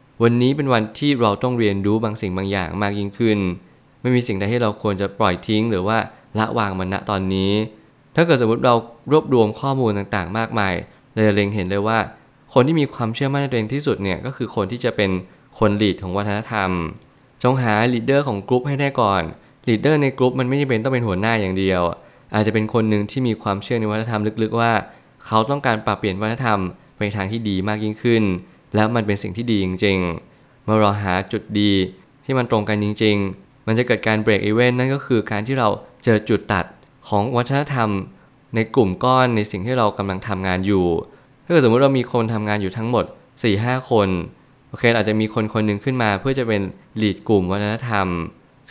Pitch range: 100-125 Hz